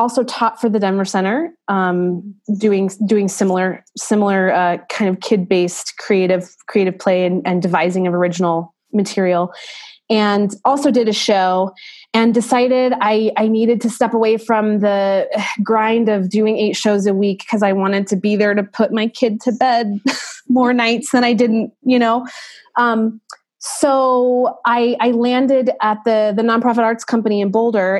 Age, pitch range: 20-39, 185-230 Hz